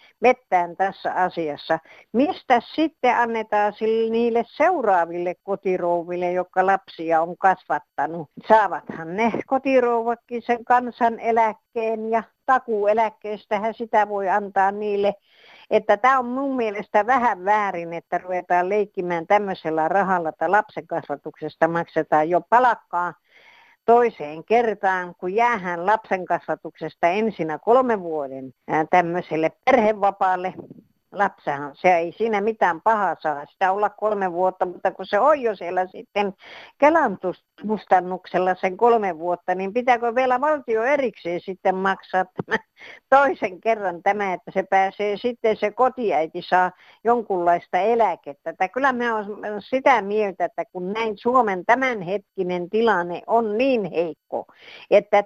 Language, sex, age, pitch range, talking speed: Finnish, female, 60-79, 180-230 Hz, 120 wpm